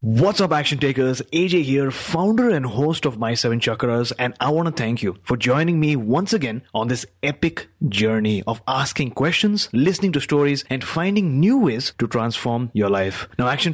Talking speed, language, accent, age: 190 wpm, English, Indian, 30-49